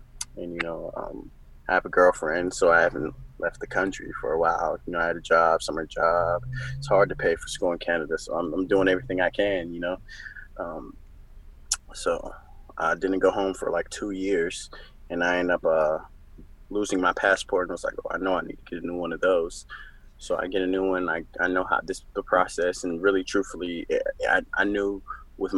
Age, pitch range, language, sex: 20-39, 85-100 Hz, English, male